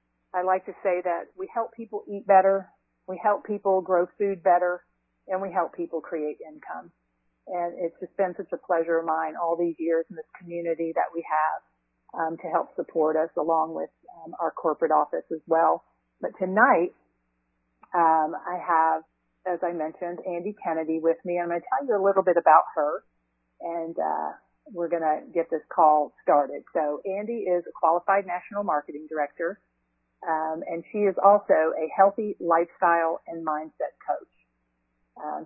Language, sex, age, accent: English, female, 40-59, American